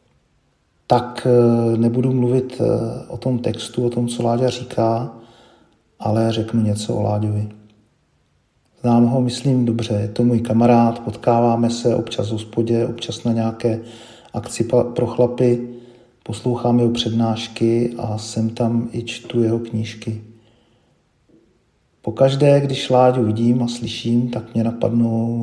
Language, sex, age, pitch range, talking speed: Czech, male, 40-59, 115-125 Hz, 130 wpm